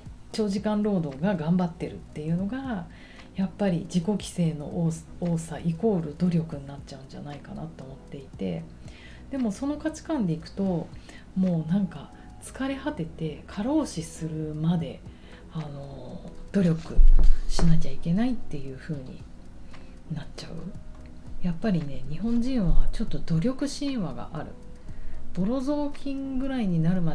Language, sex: Japanese, female